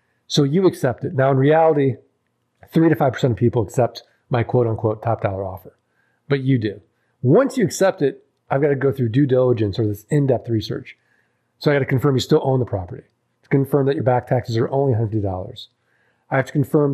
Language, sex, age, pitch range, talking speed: English, male, 40-59, 120-145 Hz, 205 wpm